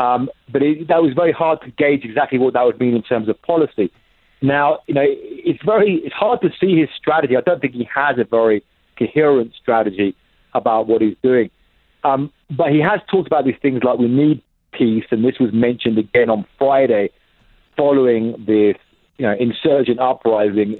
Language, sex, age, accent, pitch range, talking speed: English, male, 40-59, British, 115-140 Hz, 195 wpm